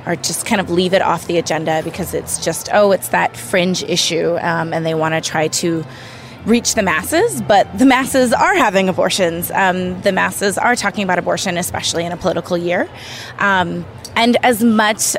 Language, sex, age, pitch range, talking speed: English, female, 20-39, 170-200 Hz, 195 wpm